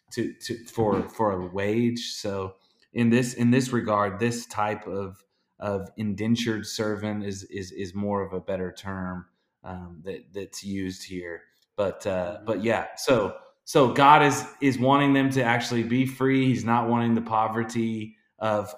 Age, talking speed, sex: 20-39, 165 wpm, male